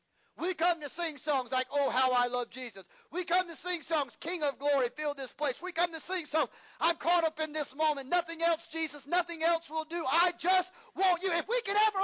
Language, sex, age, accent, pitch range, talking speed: English, male, 40-59, American, 250-350 Hz, 240 wpm